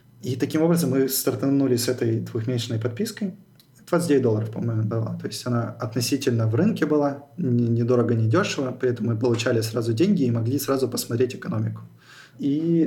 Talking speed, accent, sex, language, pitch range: 160 wpm, native, male, Russian, 120-140 Hz